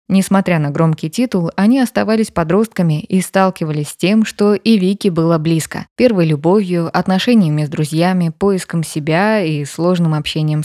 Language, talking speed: Russian, 145 wpm